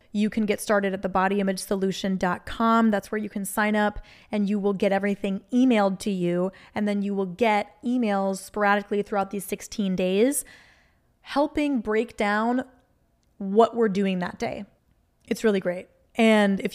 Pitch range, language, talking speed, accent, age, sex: 195-230 Hz, English, 160 wpm, American, 20-39, female